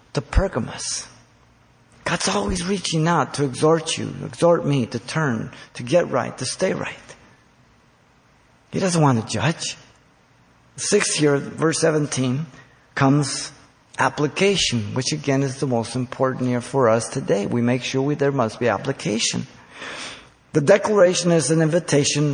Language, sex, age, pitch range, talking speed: English, male, 50-69, 135-170 Hz, 145 wpm